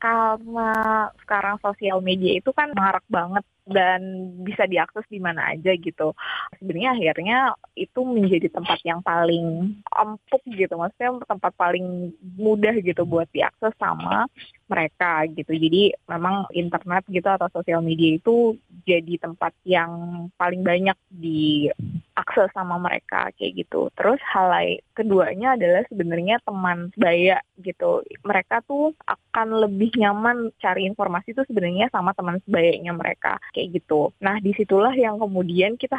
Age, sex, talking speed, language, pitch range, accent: 20-39, female, 135 wpm, Indonesian, 175-220 Hz, native